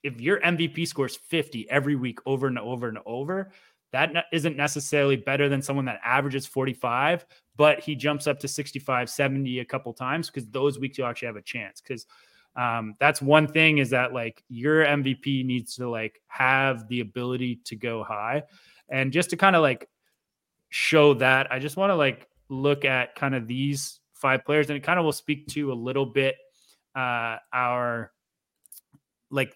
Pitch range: 125-145 Hz